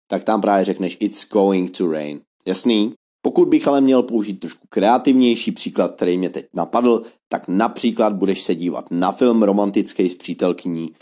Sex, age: male, 30-49